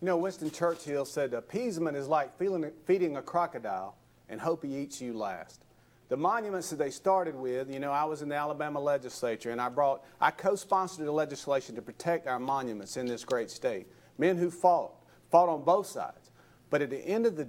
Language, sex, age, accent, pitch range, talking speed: English, male, 50-69, American, 140-185 Hz, 205 wpm